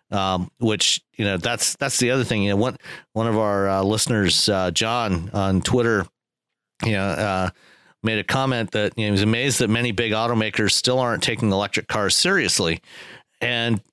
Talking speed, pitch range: 190 wpm, 100-125 Hz